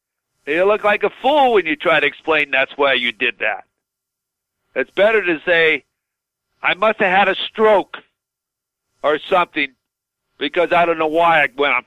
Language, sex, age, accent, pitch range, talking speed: English, male, 60-79, American, 150-200 Hz, 175 wpm